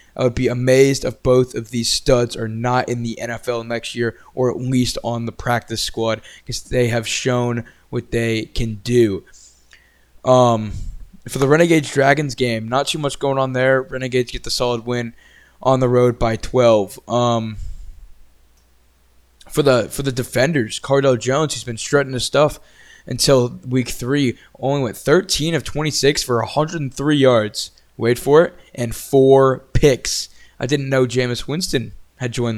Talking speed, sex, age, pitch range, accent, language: 165 wpm, male, 20-39, 115-135 Hz, American, English